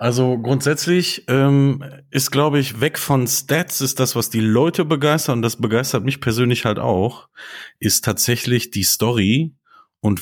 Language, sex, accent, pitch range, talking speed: German, male, German, 95-125 Hz, 160 wpm